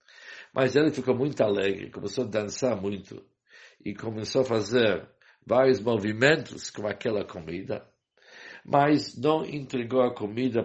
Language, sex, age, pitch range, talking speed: English, male, 60-79, 105-130 Hz, 130 wpm